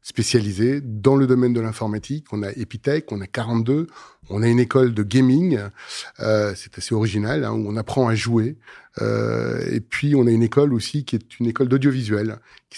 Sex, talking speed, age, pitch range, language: male, 195 wpm, 30-49, 115-135 Hz, French